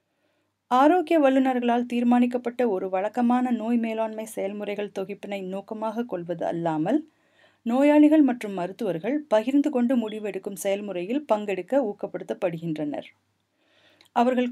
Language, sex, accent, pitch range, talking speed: Tamil, female, native, 200-280 Hz, 90 wpm